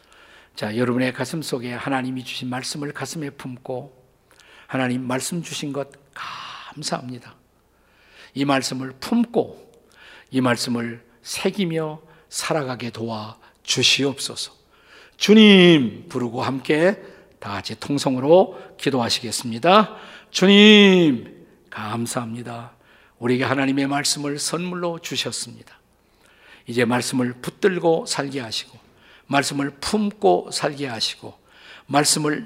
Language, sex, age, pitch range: Korean, male, 50-69, 130-175 Hz